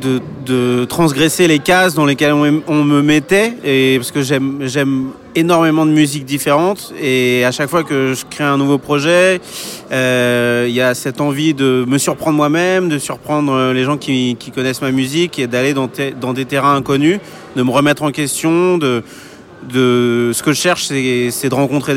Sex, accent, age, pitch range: male, French, 30-49, 125-150 Hz